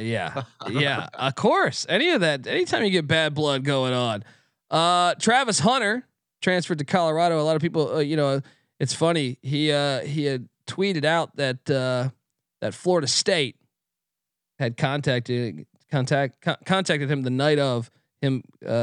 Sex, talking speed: male, 160 wpm